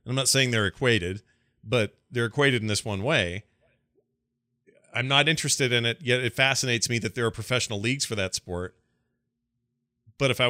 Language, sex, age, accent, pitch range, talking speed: English, male, 40-59, American, 120-160 Hz, 185 wpm